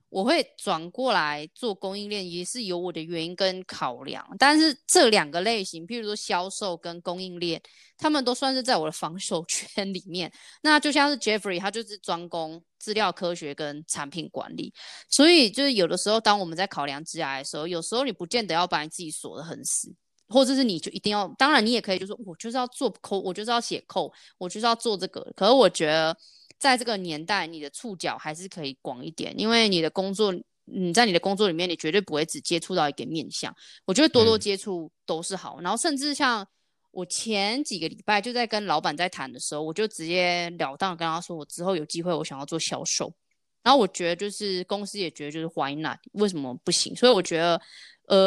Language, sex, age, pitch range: Chinese, female, 20-39, 170-230 Hz